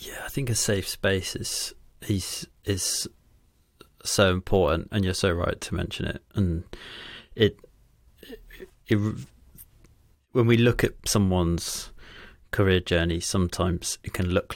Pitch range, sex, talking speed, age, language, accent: 90-105 Hz, male, 135 wpm, 30-49, English, British